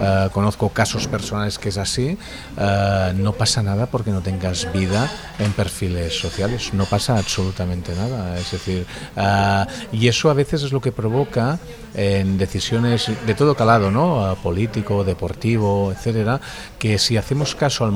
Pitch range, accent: 95-120 Hz, Spanish